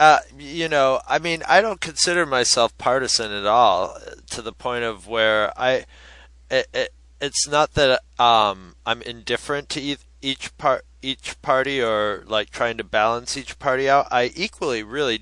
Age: 20-39